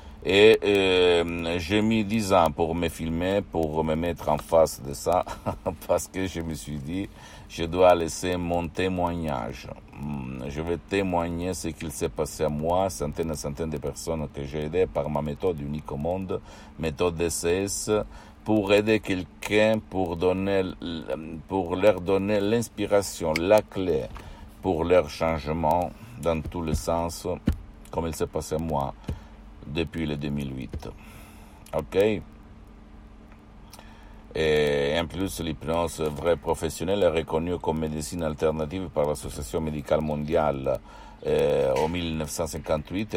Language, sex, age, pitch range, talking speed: Italian, male, 60-79, 75-90 Hz, 140 wpm